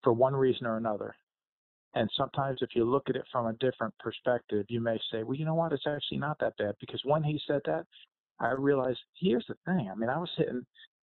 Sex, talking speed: male, 235 wpm